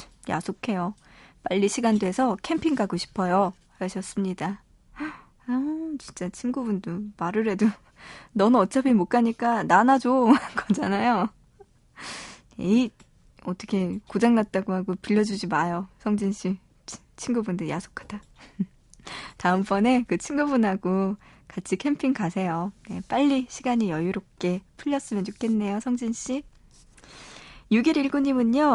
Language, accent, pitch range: Korean, native, 195-270 Hz